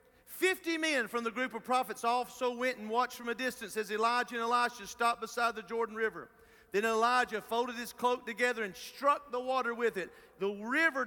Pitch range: 220-250 Hz